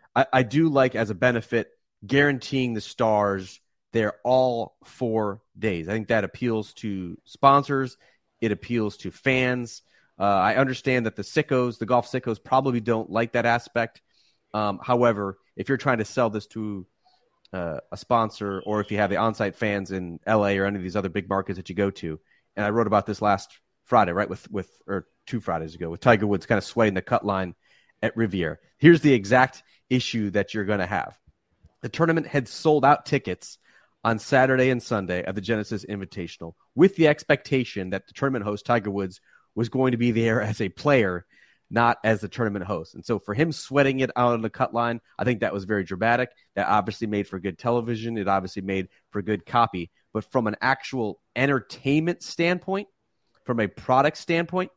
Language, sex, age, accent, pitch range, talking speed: English, male, 30-49, American, 100-130 Hz, 195 wpm